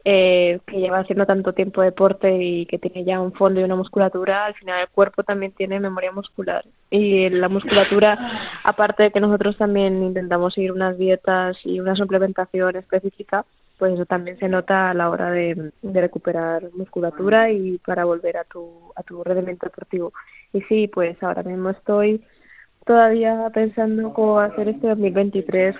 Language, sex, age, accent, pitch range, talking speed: Spanish, female, 20-39, Spanish, 180-200 Hz, 165 wpm